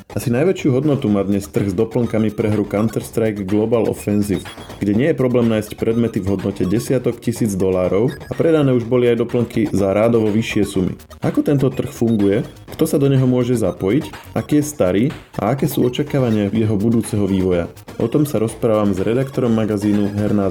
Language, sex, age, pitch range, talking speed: Slovak, male, 20-39, 100-120 Hz, 180 wpm